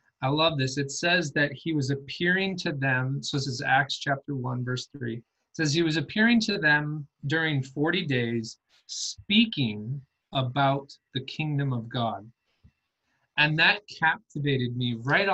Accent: American